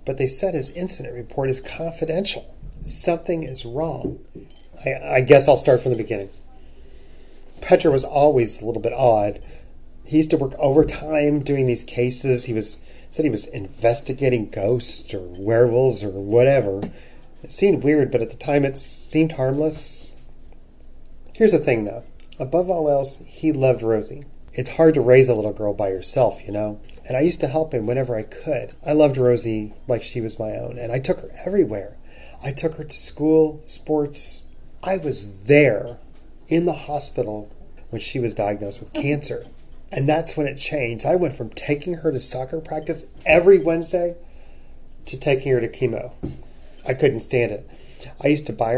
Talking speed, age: 175 wpm, 30-49